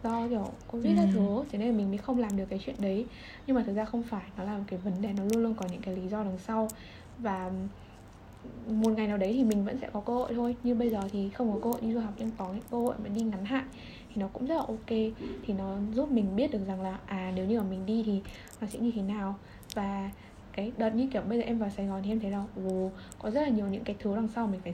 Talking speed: 300 wpm